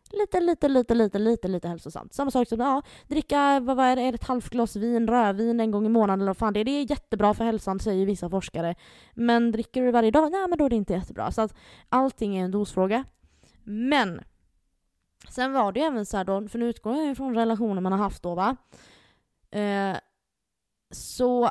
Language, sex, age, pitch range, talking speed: Swedish, female, 20-39, 195-250 Hz, 220 wpm